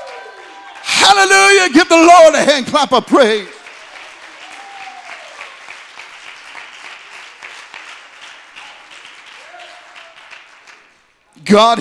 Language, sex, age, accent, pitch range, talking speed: English, male, 50-69, American, 230-285 Hz, 50 wpm